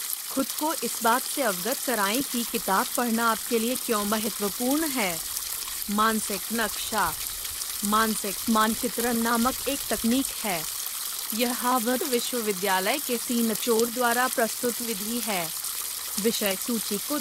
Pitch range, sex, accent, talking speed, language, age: 215-255 Hz, female, native, 130 wpm, Hindi, 20-39